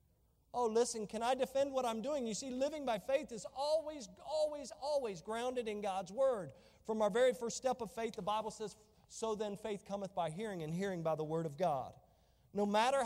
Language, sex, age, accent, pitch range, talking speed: English, male, 40-59, American, 160-235 Hz, 210 wpm